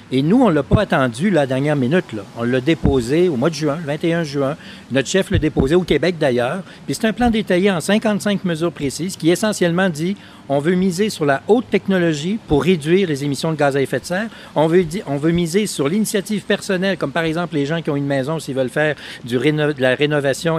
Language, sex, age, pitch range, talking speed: French, male, 60-79, 140-190 Hz, 240 wpm